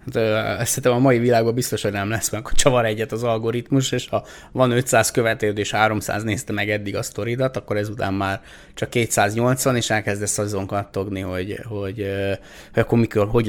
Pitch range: 100-115 Hz